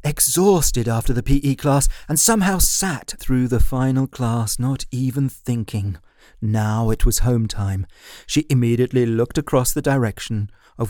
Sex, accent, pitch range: male, British, 110-140 Hz